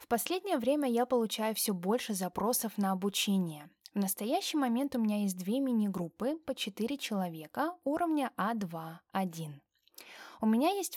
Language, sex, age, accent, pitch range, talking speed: Russian, female, 20-39, native, 190-260 Hz, 140 wpm